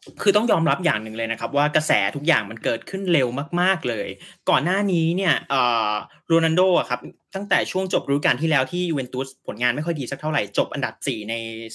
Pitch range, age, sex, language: 125-170 Hz, 20-39, male, Thai